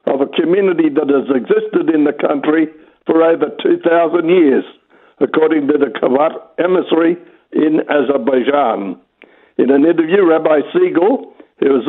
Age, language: 60-79, English